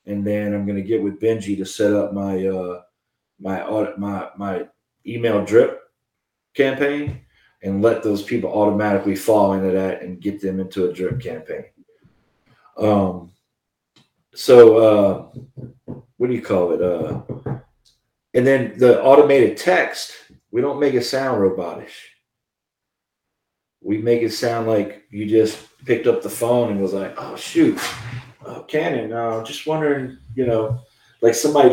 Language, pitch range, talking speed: English, 105-140 Hz, 155 wpm